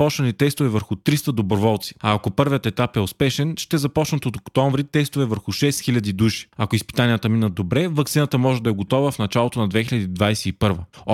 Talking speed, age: 165 wpm, 20-39